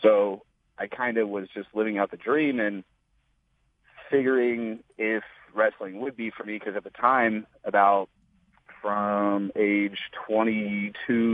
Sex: male